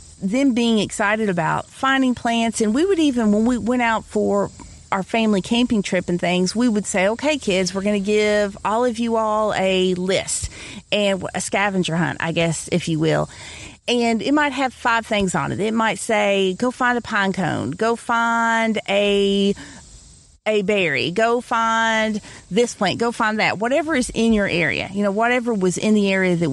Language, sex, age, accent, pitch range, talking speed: English, female, 40-59, American, 190-235 Hz, 195 wpm